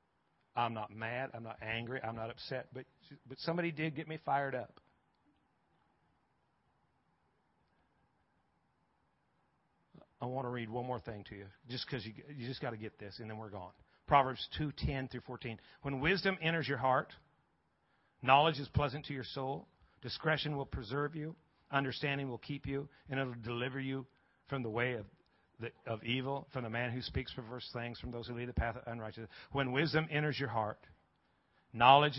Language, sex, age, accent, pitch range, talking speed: English, male, 50-69, American, 115-140 Hz, 175 wpm